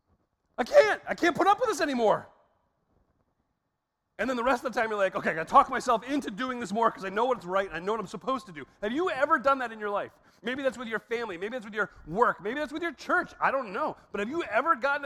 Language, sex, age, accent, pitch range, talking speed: English, male, 40-59, American, 170-255 Hz, 285 wpm